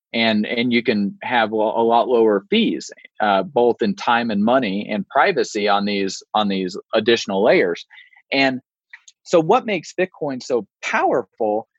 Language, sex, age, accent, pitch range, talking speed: English, male, 30-49, American, 110-140 Hz, 155 wpm